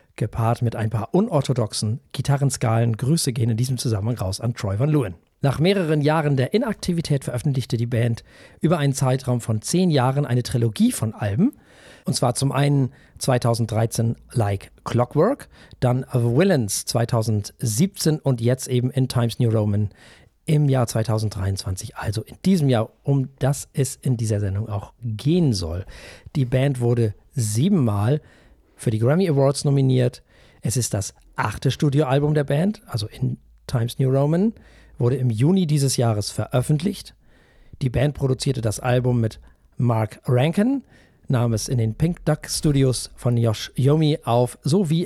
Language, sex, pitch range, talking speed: German, male, 115-150 Hz, 150 wpm